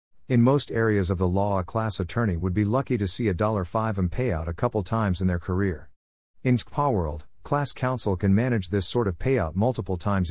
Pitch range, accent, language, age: 90-115 Hz, American, English, 50-69